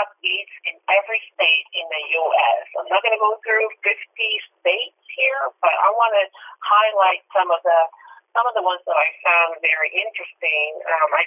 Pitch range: 170-225 Hz